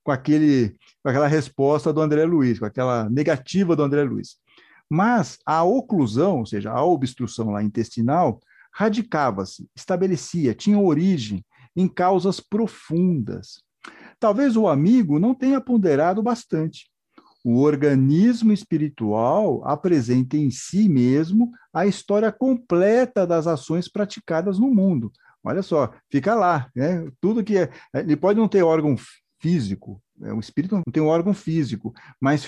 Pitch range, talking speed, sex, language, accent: 145-205 Hz, 135 wpm, male, Portuguese, Brazilian